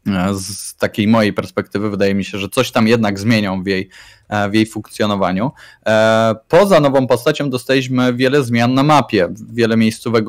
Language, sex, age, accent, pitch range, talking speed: Polish, male, 20-39, native, 100-120 Hz, 150 wpm